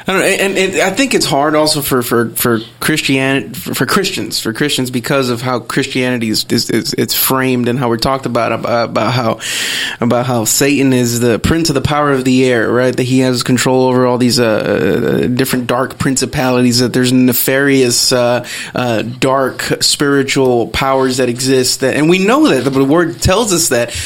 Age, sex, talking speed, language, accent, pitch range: 20-39, male, 200 wpm, English, American, 125-150 Hz